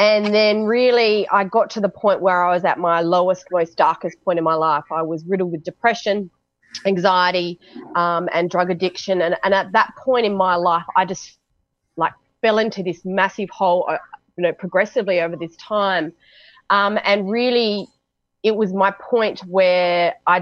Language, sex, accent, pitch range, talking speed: English, female, Australian, 175-210 Hz, 180 wpm